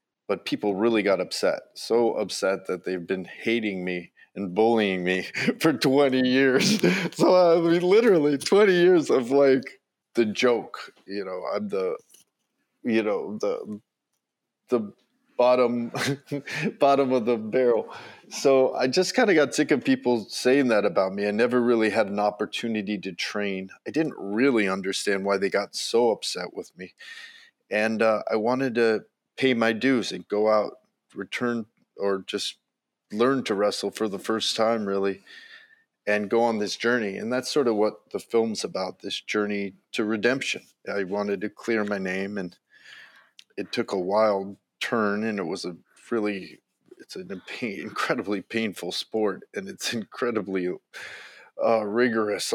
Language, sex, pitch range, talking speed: English, male, 105-135 Hz, 160 wpm